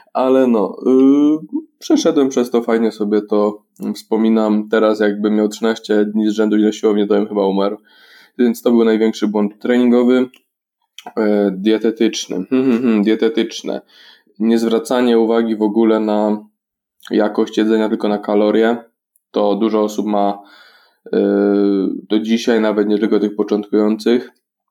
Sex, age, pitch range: male, 20-39, 105-125 Hz